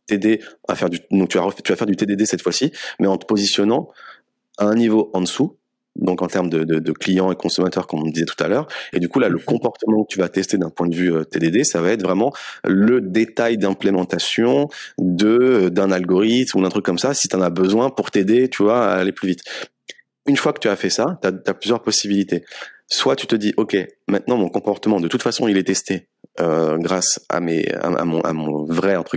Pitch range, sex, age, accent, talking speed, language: 90-110 Hz, male, 30-49, French, 230 wpm, French